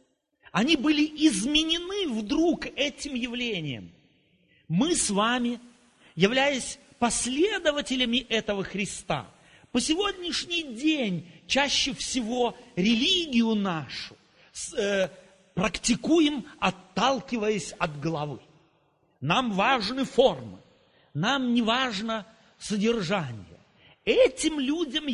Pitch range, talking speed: 195-290 Hz, 80 wpm